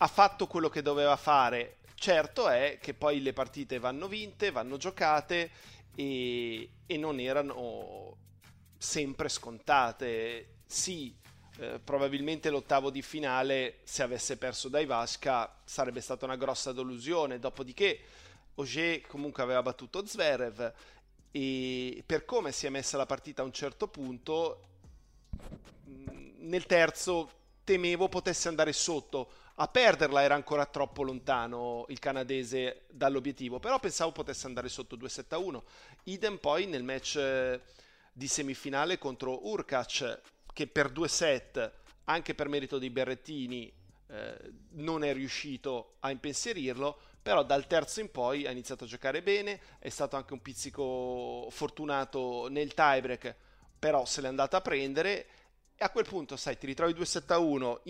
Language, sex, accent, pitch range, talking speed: Italian, male, native, 125-155 Hz, 140 wpm